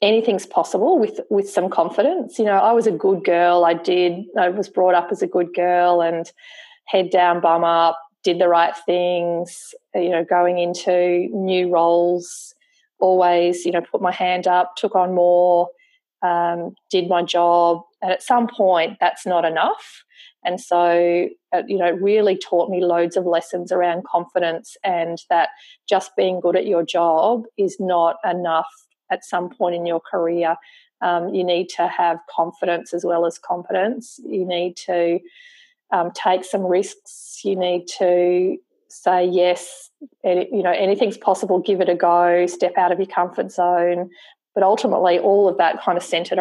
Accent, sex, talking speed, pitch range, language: Australian, female, 175 wpm, 175-195 Hz, English